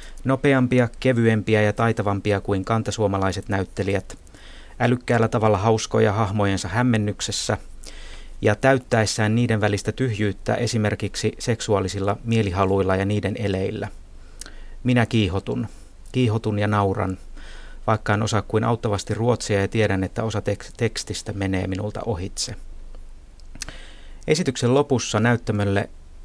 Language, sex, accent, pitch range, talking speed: Finnish, male, native, 95-115 Hz, 105 wpm